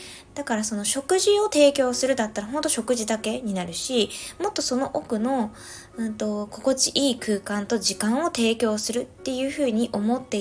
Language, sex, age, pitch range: Japanese, female, 20-39, 210-270 Hz